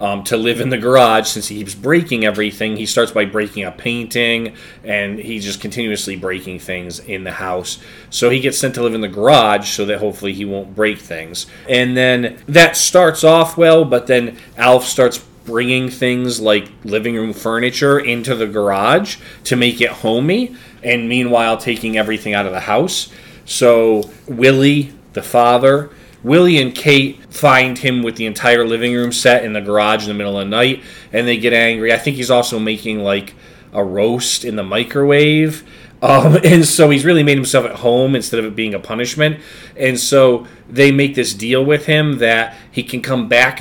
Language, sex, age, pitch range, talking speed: English, male, 20-39, 110-135 Hz, 195 wpm